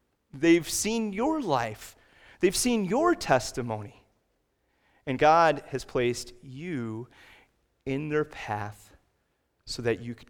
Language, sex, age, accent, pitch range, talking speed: English, male, 30-49, American, 120-150 Hz, 115 wpm